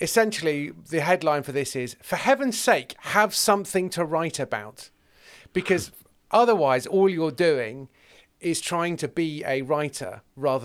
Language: English